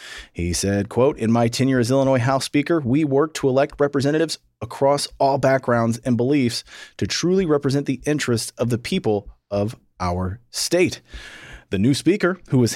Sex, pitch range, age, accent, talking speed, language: male, 115-150 Hz, 30-49, American, 170 wpm, English